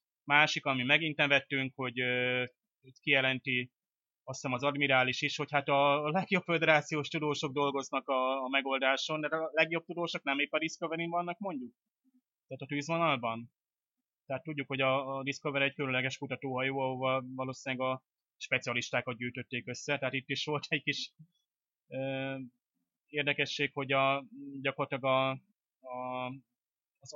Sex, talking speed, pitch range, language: male, 140 wpm, 125-145 Hz, Hungarian